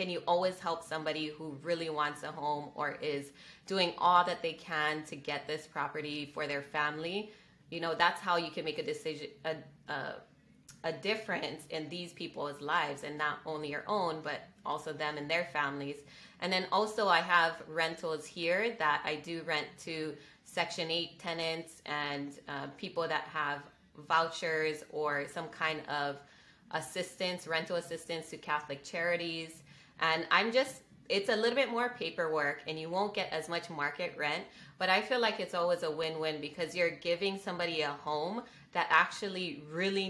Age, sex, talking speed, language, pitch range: 20-39, female, 175 wpm, English, 150-175 Hz